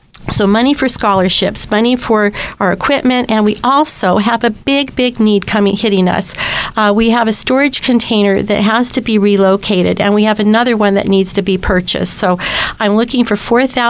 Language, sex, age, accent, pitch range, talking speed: English, female, 50-69, American, 195-230 Hz, 195 wpm